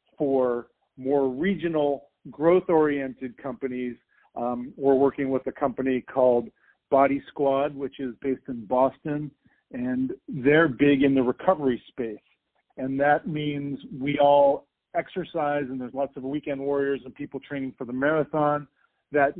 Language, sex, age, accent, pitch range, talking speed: English, male, 50-69, American, 130-155 Hz, 140 wpm